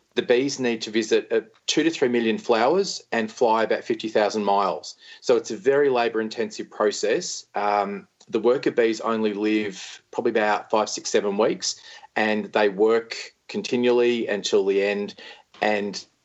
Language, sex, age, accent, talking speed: English, male, 40-59, Australian, 150 wpm